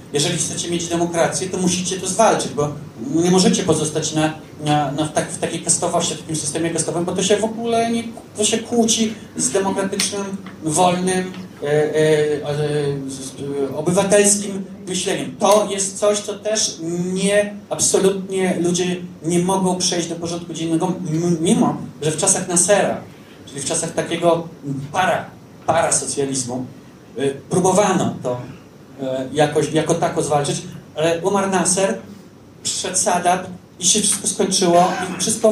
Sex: male